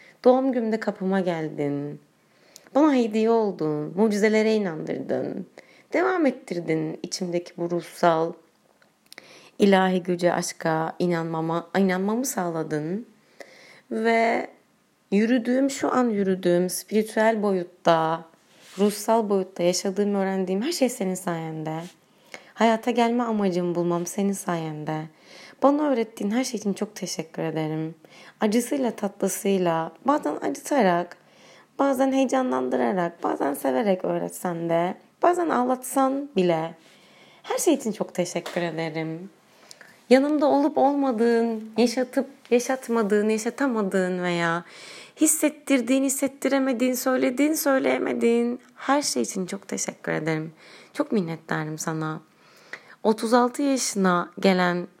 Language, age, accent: Turkish, 30-49, native